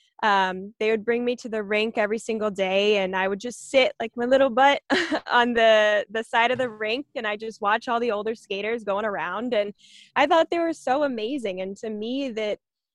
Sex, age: female, 20-39